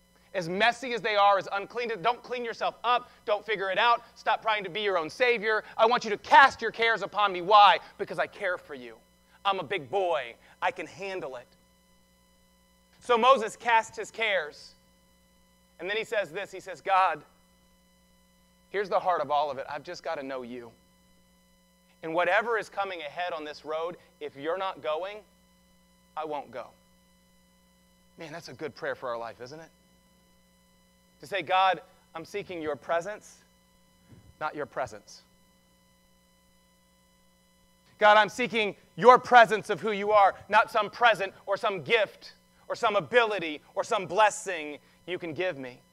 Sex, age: male, 30-49